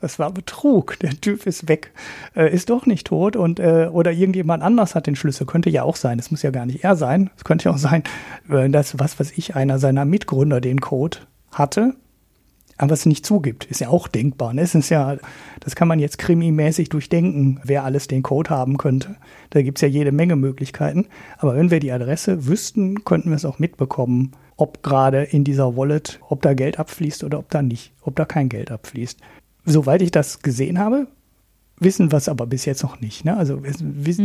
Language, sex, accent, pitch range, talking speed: German, male, German, 135-170 Hz, 215 wpm